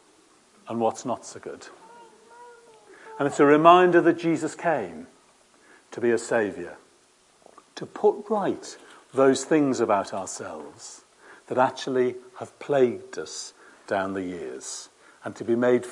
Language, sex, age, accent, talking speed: English, male, 50-69, British, 130 wpm